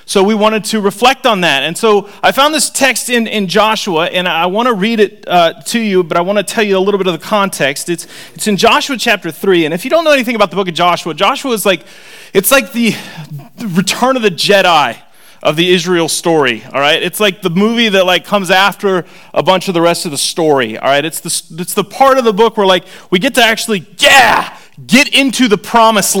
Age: 30-49